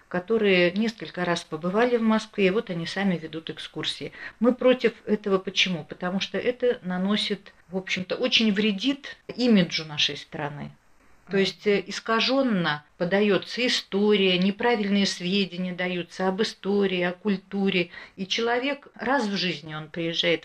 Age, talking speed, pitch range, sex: 50-69, 130 wpm, 180-220 Hz, female